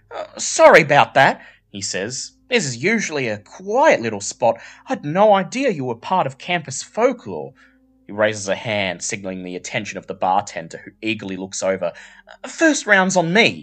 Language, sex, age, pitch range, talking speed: English, male, 30-49, 90-150 Hz, 175 wpm